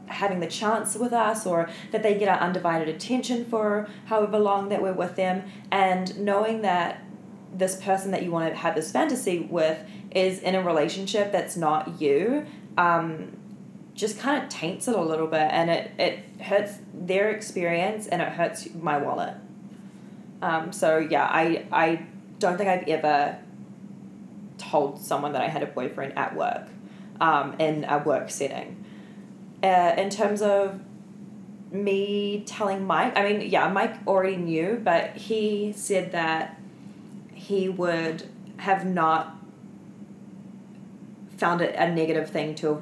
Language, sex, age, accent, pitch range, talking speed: English, female, 20-39, Australian, 160-205 Hz, 155 wpm